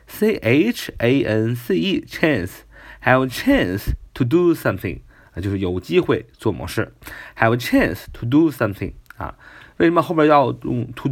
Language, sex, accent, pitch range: Chinese, male, native, 110-185 Hz